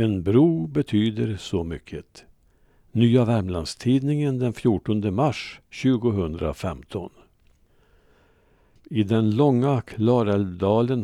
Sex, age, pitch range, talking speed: male, 60-79, 95-130 Hz, 80 wpm